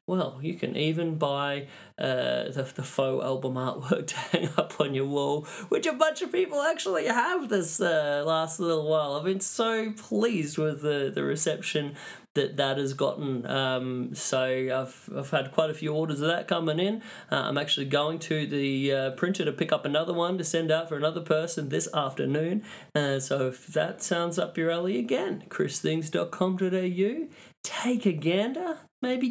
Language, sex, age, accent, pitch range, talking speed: English, male, 20-39, Australian, 140-210 Hz, 180 wpm